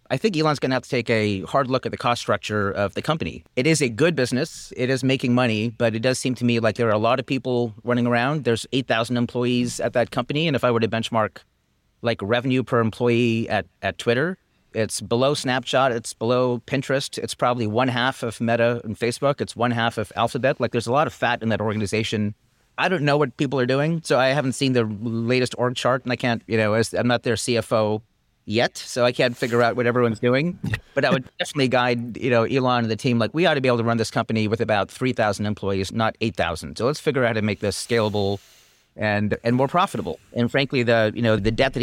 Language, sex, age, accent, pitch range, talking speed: English, male, 30-49, American, 110-125 Hz, 245 wpm